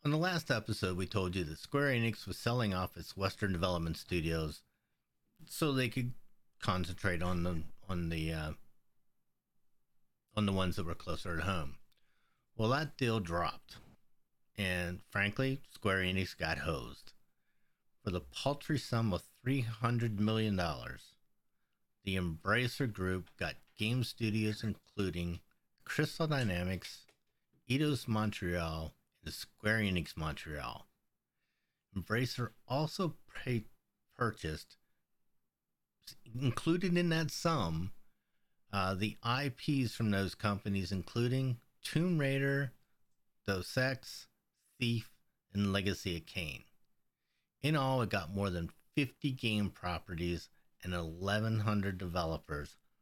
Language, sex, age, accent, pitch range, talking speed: English, male, 50-69, American, 90-125 Hz, 115 wpm